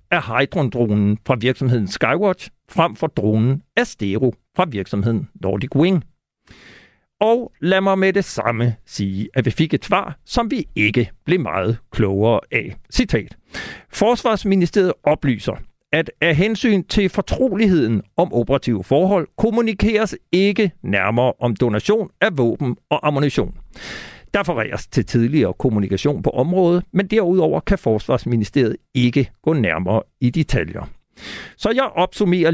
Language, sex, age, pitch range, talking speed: Danish, male, 60-79, 115-185 Hz, 130 wpm